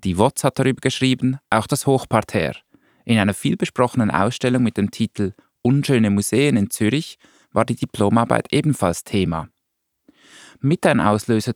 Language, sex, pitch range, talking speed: German, male, 105-130 Hz, 140 wpm